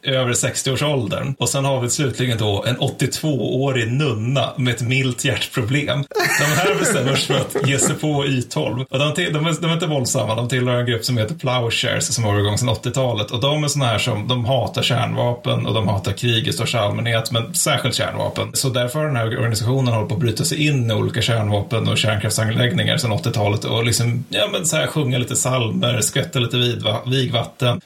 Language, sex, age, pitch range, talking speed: Swedish, male, 30-49, 115-140 Hz, 205 wpm